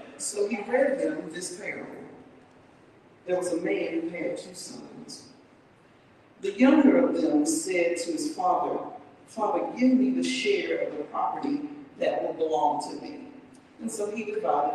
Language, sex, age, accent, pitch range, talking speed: English, female, 40-59, American, 205-300 Hz, 160 wpm